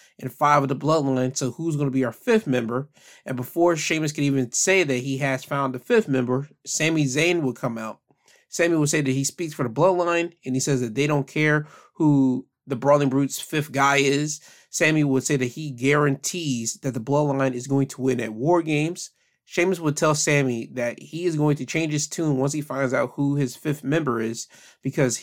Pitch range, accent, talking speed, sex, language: 130-160 Hz, American, 215 wpm, male, English